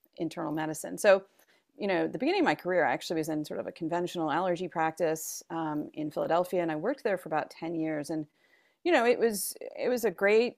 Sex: female